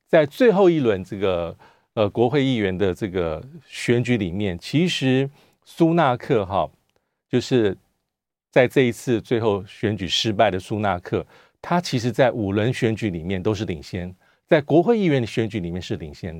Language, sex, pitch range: Chinese, male, 95-135 Hz